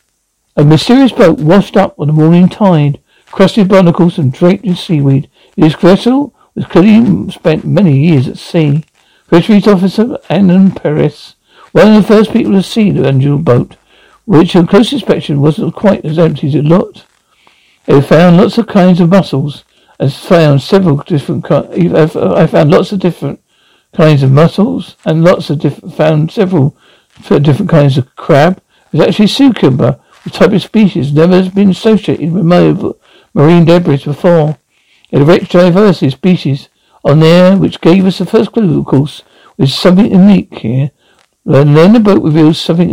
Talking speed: 170 wpm